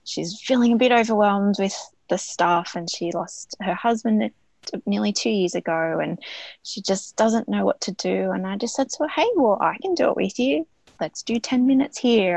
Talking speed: 215 wpm